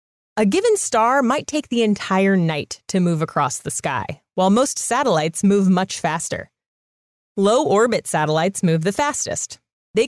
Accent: American